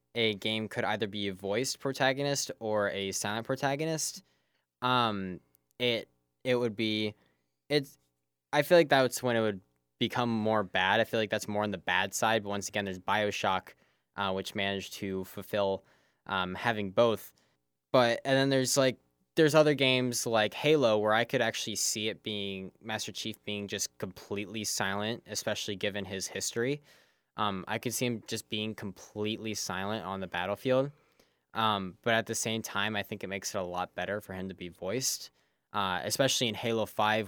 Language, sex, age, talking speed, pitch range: English, male, 10-29, 180 wpm, 95-115 Hz